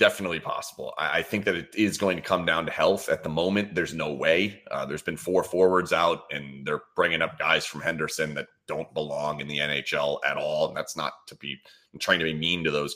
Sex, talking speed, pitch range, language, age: male, 245 wpm, 90-135 Hz, English, 30-49